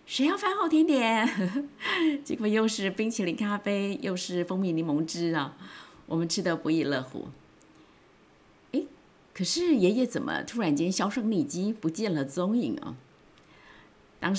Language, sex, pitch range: Chinese, female, 160-240 Hz